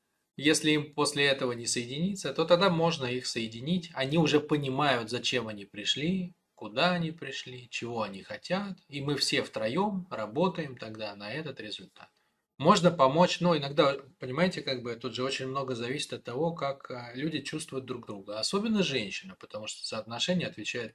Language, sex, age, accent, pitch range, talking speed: Russian, male, 20-39, native, 120-165 Hz, 165 wpm